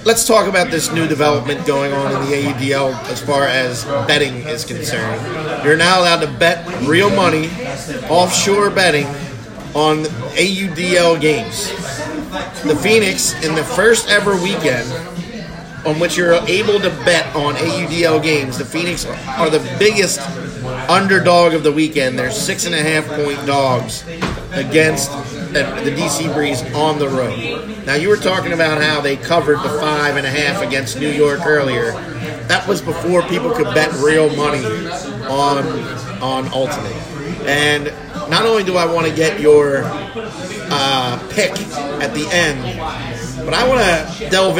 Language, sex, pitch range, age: English, male, 140-170 Hz, 40-59